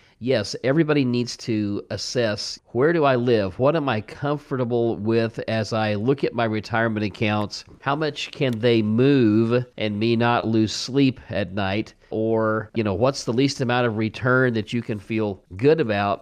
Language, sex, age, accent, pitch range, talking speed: English, male, 50-69, American, 110-130 Hz, 180 wpm